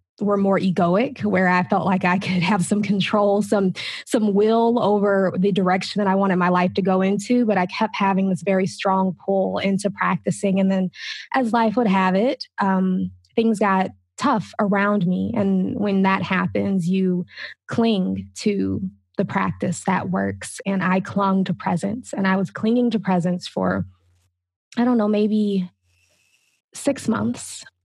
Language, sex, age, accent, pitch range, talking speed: English, female, 20-39, American, 185-210 Hz, 170 wpm